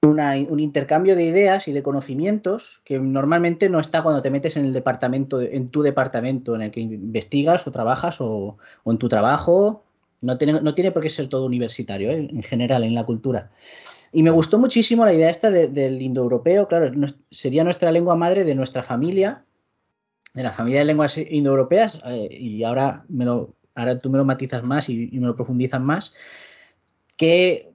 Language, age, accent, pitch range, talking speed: Spanish, 20-39, Spanish, 130-160 Hz, 195 wpm